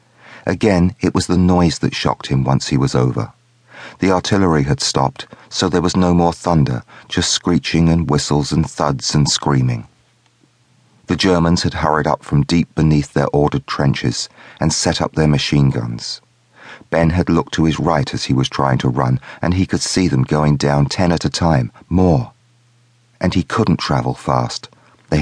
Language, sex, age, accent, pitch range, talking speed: English, male, 40-59, British, 70-90 Hz, 185 wpm